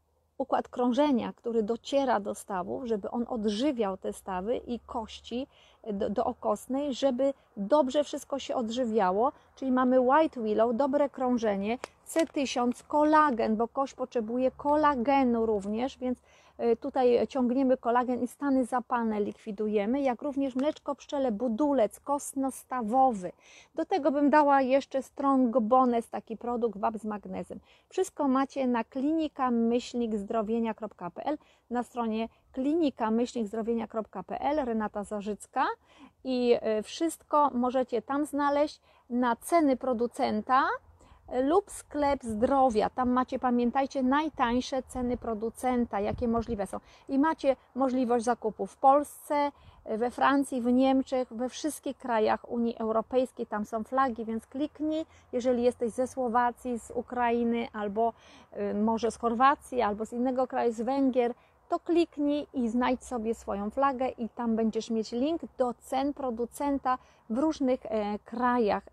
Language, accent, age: Polish, native, 30-49